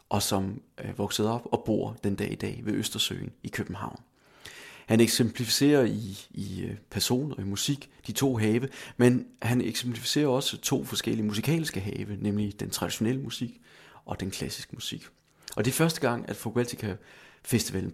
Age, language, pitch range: 30-49, English, 100-125 Hz